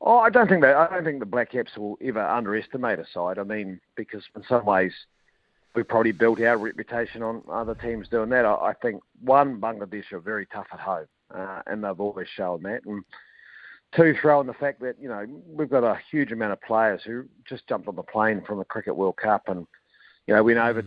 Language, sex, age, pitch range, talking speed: English, male, 50-69, 110-140 Hz, 225 wpm